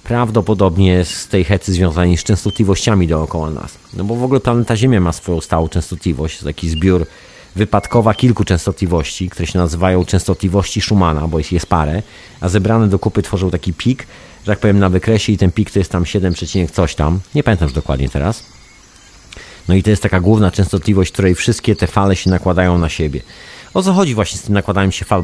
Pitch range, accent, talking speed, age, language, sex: 90-110 Hz, native, 195 wpm, 40-59, Polish, male